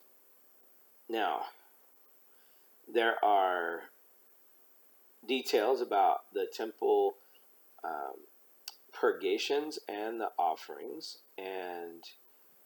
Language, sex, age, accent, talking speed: English, male, 40-59, American, 60 wpm